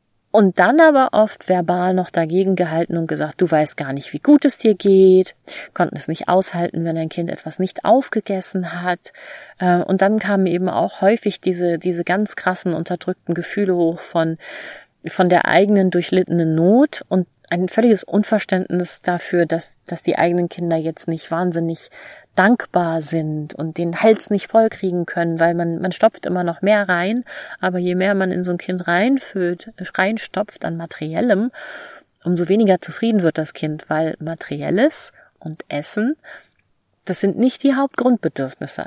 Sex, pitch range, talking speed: female, 165-200 Hz, 160 wpm